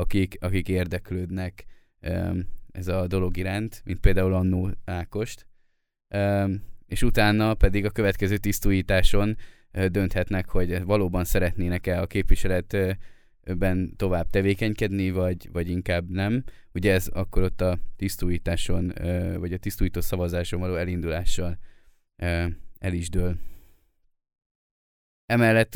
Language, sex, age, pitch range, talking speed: Hungarian, male, 20-39, 90-100 Hz, 105 wpm